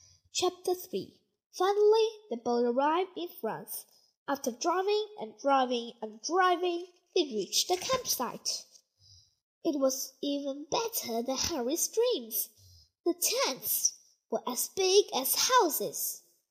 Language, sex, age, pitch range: Chinese, female, 10-29, 235-390 Hz